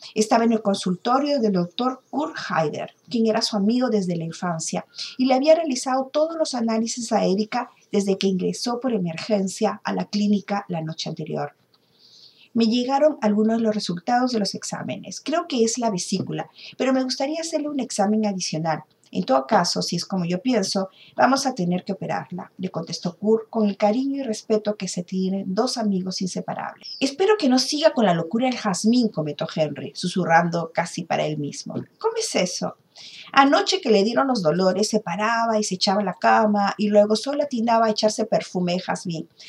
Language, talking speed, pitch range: Spanish, 190 wpm, 185-245 Hz